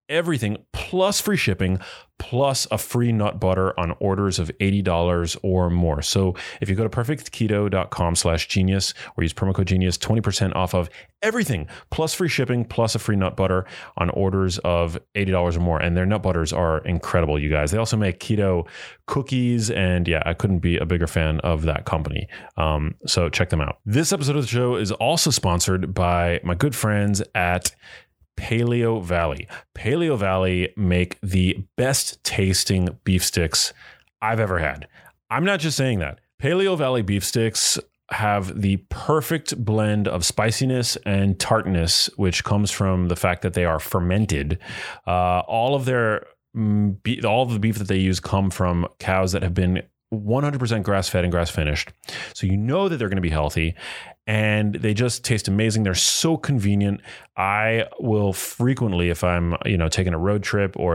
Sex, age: male, 30-49